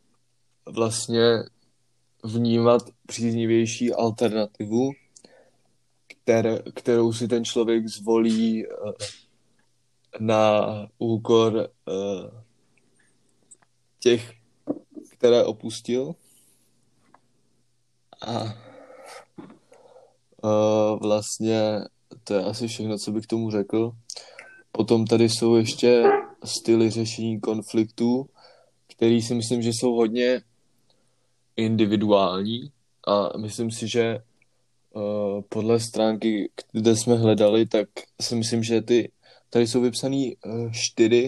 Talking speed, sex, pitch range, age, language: 85 wpm, male, 110-120 Hz, 20-39, Czech